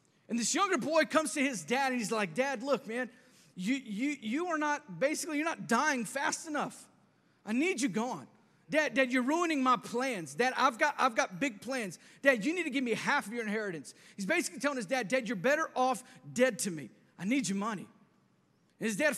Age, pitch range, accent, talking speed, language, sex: 40-59, 205-275 Hz, American, 220 wpm, English, male